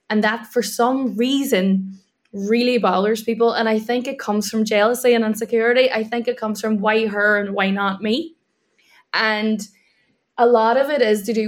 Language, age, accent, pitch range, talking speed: English, 10-29, Irish, 195-230 Hz, 190 wpm